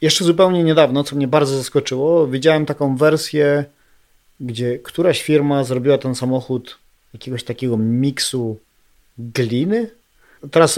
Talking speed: 115 wpm